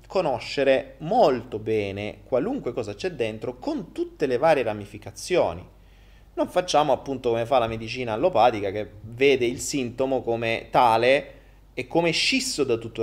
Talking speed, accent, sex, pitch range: 145 wpm, native, male, 110-165 Hz